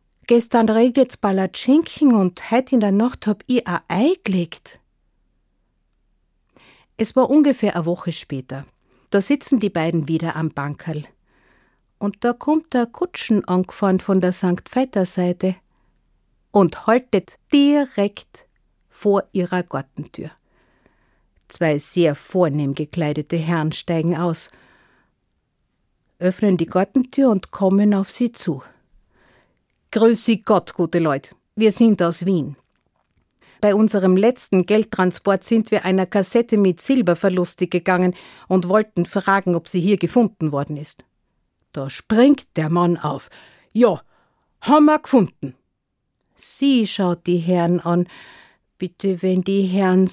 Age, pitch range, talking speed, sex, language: 50-69, 175-220 Hz, 125 wpm, female, German